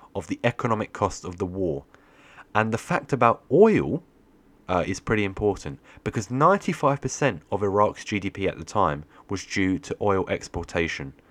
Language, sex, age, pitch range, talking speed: English, male, 30-49, 90-120 Hz, 155 wpm